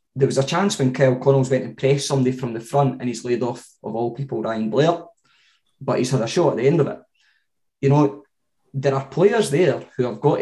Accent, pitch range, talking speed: British, 125-145 Hz, 240 wpm